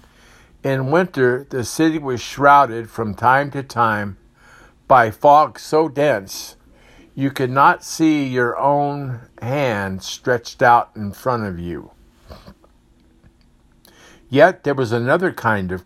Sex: male